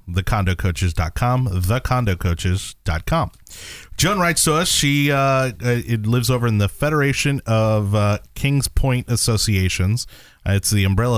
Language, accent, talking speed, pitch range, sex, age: English, American, 125 wpm, 90-115 Hz, male, 30-49